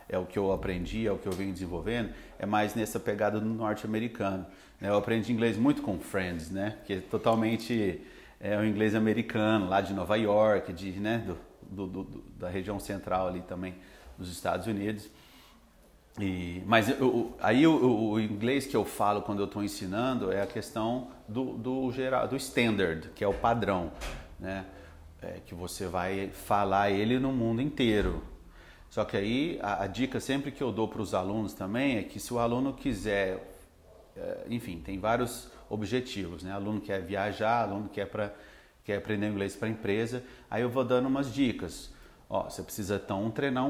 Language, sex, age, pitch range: Portuguese, male, 40-59, 95-115 Hz